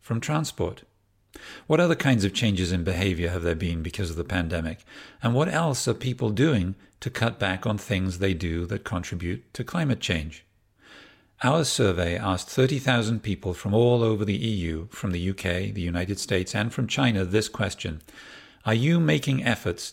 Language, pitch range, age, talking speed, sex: English, 90-120 Hz, 50-69, 180 wpm, male